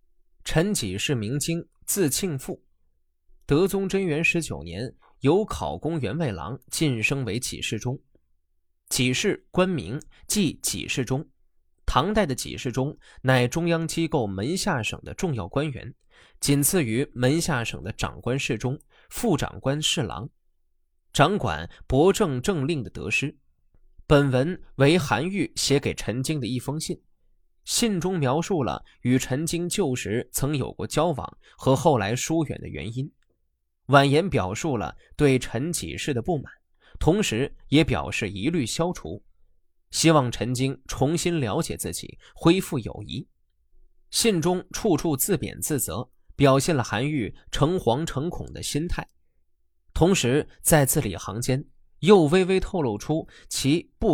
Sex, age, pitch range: male, 20-39, 115-165 Hz